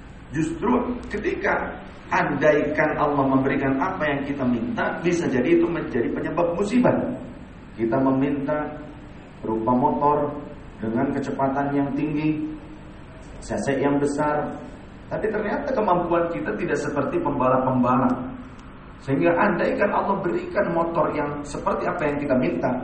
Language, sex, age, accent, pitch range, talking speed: Indonesian, male, 40-59, native, 125-150 Hz, 115 wpm